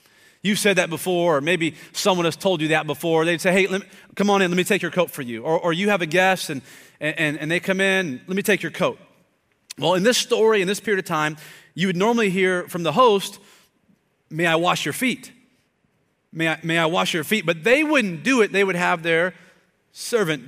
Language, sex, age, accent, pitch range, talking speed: English, male, 30-49, American, 170-220 Hz, 240 wpm